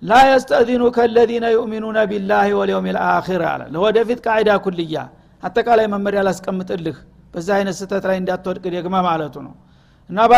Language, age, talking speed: Amharic, 60-79, 140 wpm